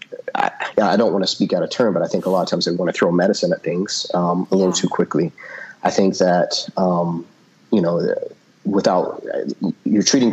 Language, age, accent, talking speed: English, 30-49, American, 215 wpm